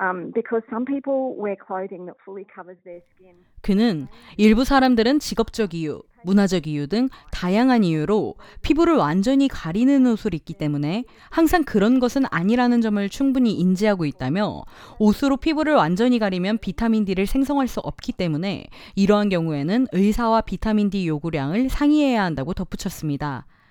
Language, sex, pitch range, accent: Korean, female, 180-250 Hz, native